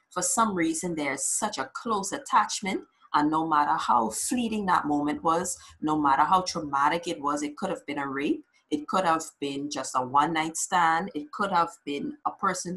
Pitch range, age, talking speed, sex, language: 150-195 Hz, 30-49, 200 wpm, female, English